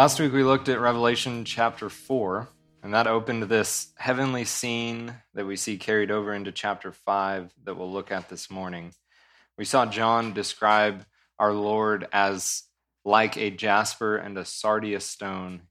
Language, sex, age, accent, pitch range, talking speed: English, male, 20-39, American, 95-115 Hz, 160 wpm